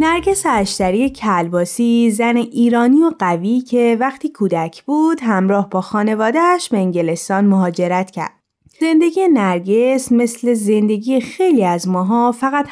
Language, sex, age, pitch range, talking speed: Persian, female, 30-49, 190-255 Hz, 125 wpm